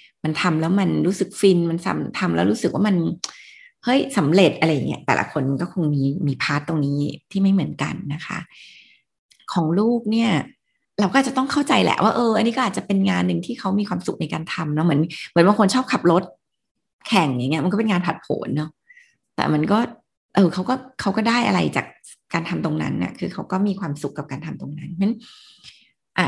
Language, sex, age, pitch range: Thai, female, 20-39, 160-220 Hz